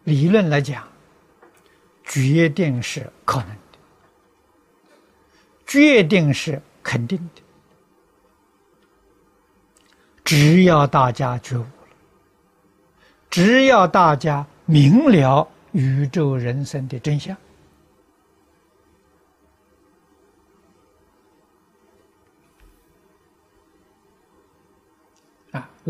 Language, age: Chinese, 60-79